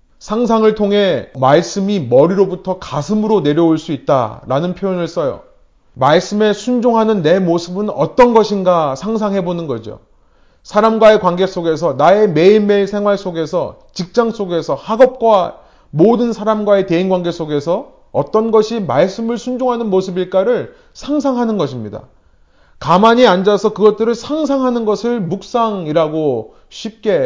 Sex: male